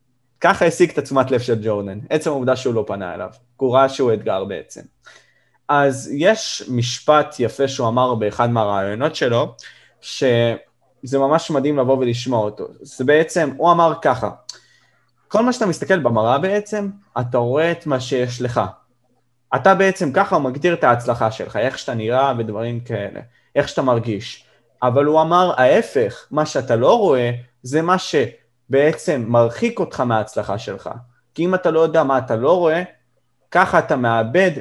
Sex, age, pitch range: male, 20-39, 125-170 Hz